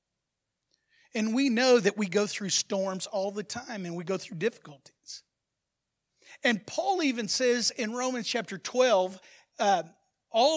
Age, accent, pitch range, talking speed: 50-69, American, 200-255 Hz, 150 wpm